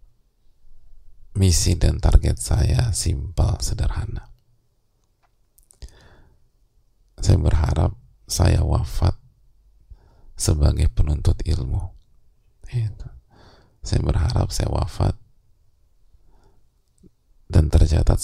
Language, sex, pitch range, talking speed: English, male, 80-105 Hz, 65 wpm